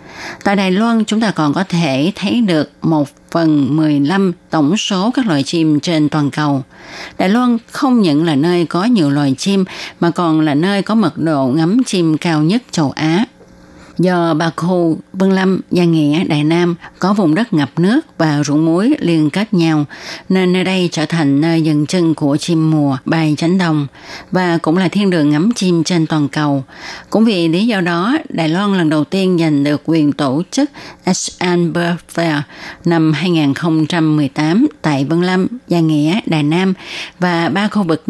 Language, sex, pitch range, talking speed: Vietnamese, female, 155-190 Hz, 185 wpm